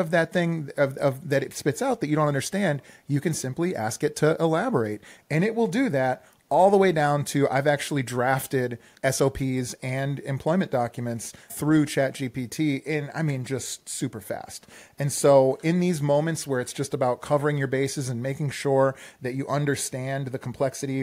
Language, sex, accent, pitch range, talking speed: English, male, American, 130-155 Hz, 190 wpm